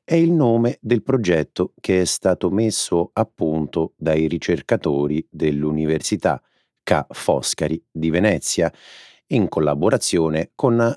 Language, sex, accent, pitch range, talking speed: Italian, male, native, 75-110 Hz, 115 wpm